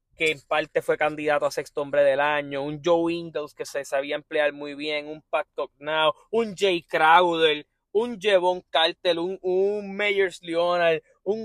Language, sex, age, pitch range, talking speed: Spanish, male, 20-39, 150-210 Hz, 175 wpm